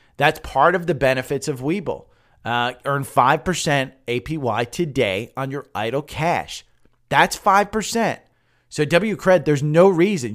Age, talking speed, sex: 30-49, 135 wpm, male